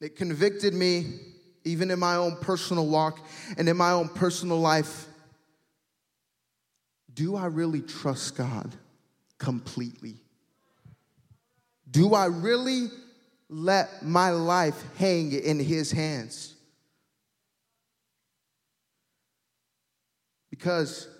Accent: American